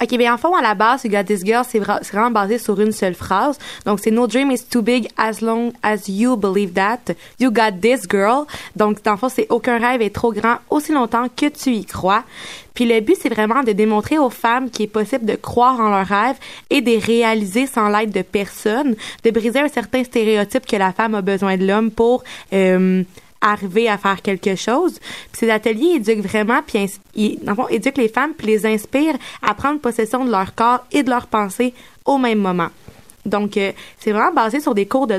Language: French